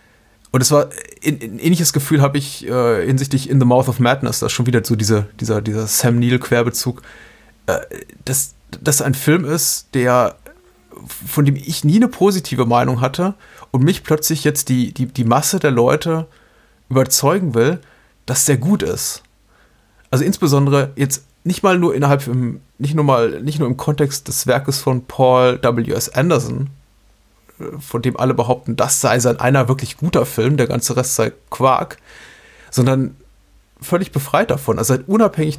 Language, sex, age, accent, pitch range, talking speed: German, male, 30-49, German, 120-145 Hz, 170 wpm